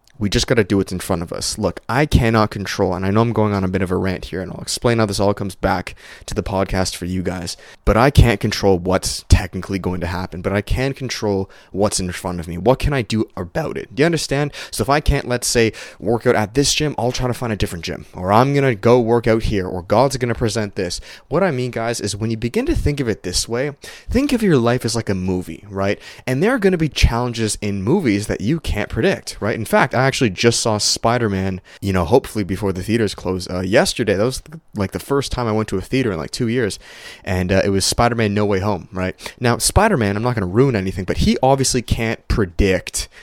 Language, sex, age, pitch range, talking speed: English, male, 20-39, 95-120 Hz, 260 wpm